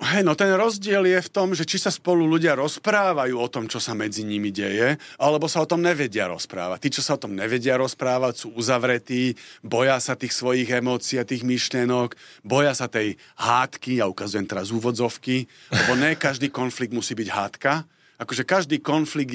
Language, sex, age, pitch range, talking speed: Slovak, male, 40-59, 125-155 Hz, 190 wpm